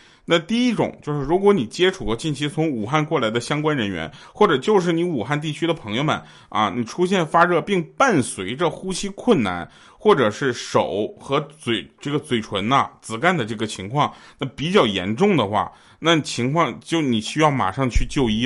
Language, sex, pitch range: Chinese, male, 115-165 Hz